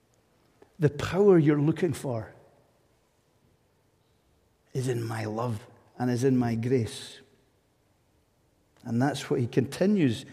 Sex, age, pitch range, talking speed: male, 50-69, 125-150 Hz, 110 wpm